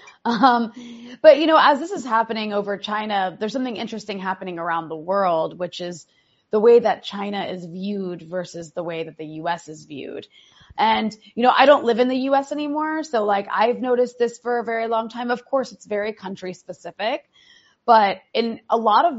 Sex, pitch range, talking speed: female, 185-235 Hz, 200 wpm